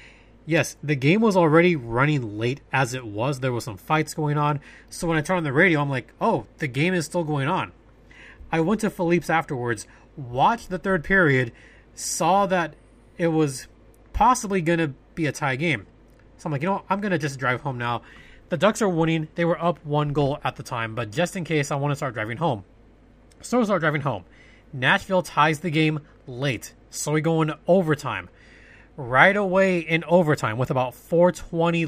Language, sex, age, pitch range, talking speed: English, male, 20-39, 130-170 Hz, 205 wpm